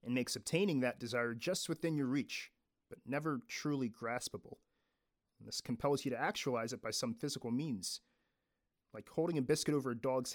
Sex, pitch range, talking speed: male, 120-150 Hz, 175 wpm